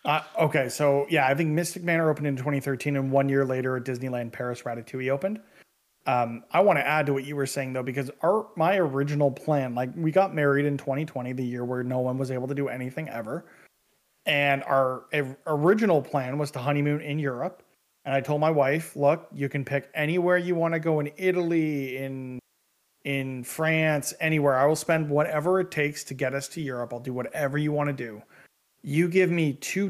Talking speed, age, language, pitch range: 210 wpm, 30-49, English, 130-155 Hz